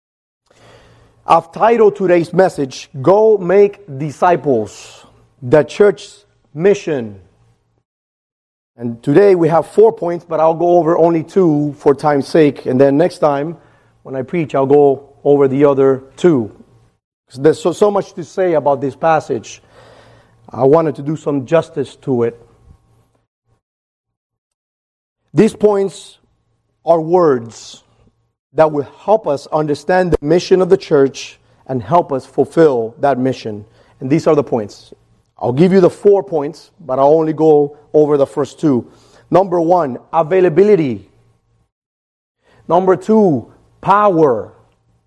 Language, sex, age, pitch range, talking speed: English, male, 40-59, 135-180 Hz, 135 wpm